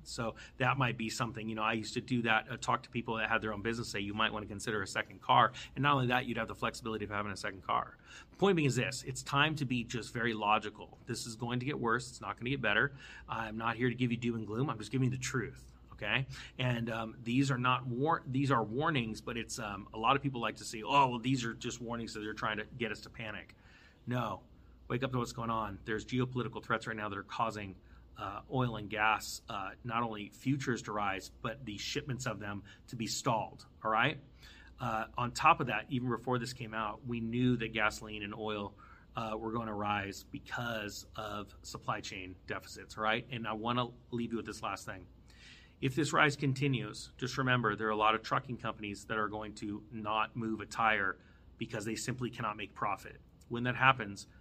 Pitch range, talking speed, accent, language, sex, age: 105-125 Hz, 245 wpm, American, English, male, 30-49